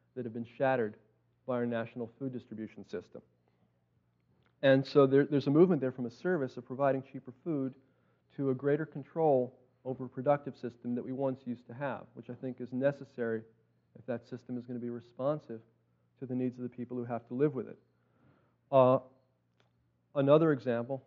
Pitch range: 115-140 Hz